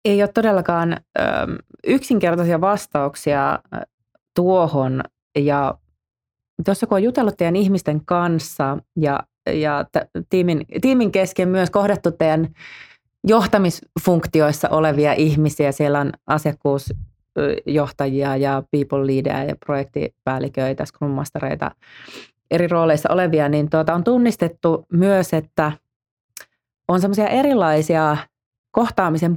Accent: native